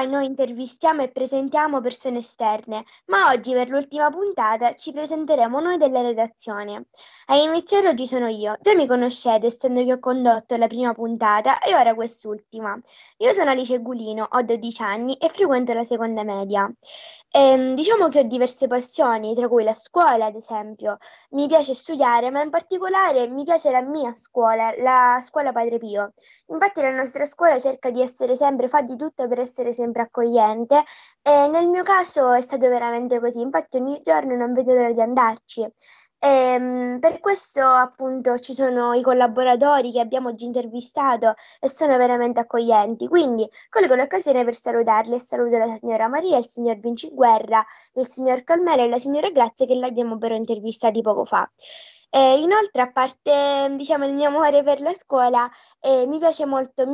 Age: 20-39